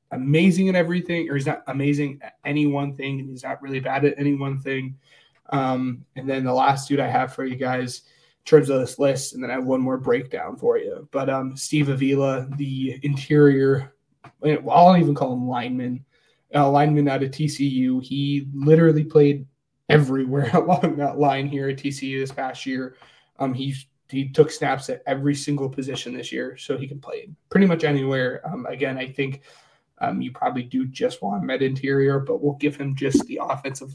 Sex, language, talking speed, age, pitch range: male, English, 200 wpm, 20-39, 135-145 Hz